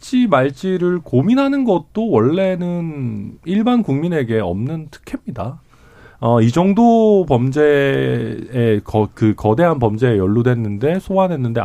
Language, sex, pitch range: Korean, male, 115-185 Hz